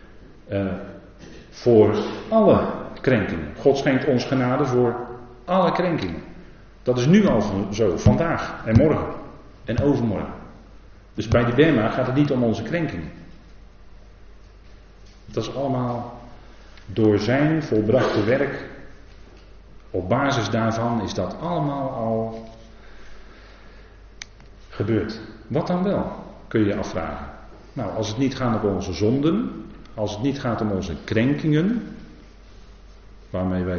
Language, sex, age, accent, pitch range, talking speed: Dutch, male, 40-59, Dutch, 100-135 Hz, 125 wpm